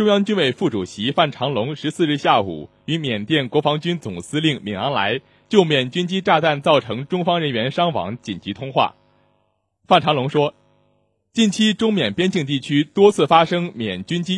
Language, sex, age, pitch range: Chinese, male, 20-39, 135-185 Hz